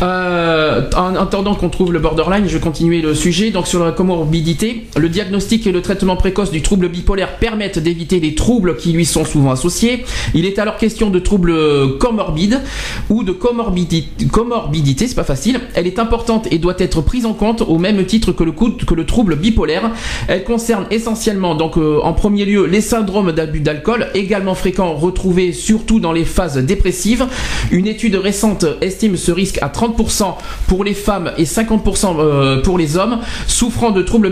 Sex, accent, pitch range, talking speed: male, French, 165-215 Hz, 180 wpm